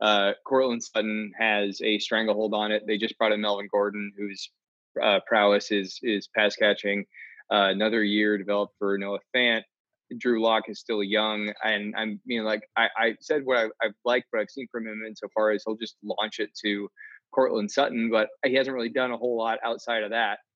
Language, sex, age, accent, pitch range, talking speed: English, male, 20-39, American, 105-115 Hz, 205 wpm